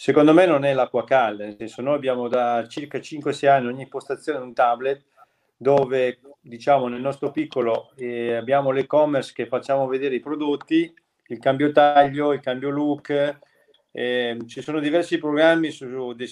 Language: Italian